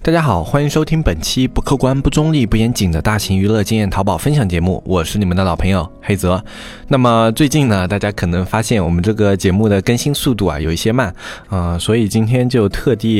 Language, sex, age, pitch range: Chinese, male, 20-39, 90-115 Hz